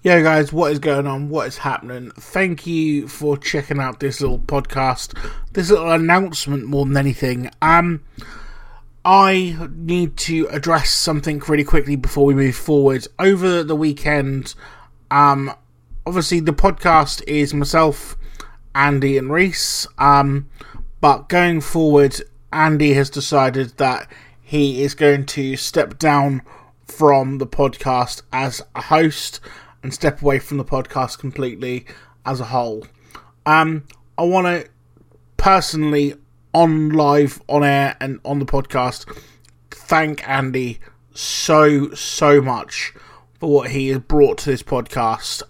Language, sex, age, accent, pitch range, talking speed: English, male, 20-39, British, 130-155 Hz, 135 wpm